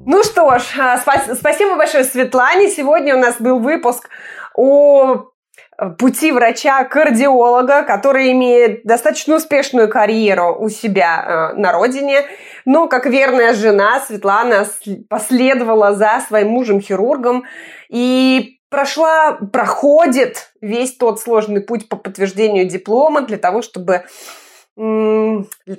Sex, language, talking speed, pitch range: female, Russian, 100 wpm, 205-265 Hz